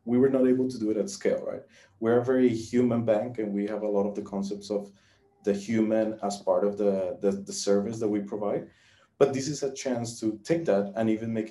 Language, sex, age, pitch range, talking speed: English, male, 30-49, 100-120 Hz, 245 wpm